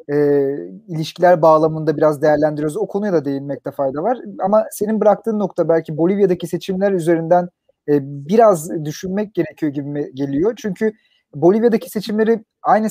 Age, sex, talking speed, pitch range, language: 40-59, male, 135 wpm, 165-220 Hz, Turkish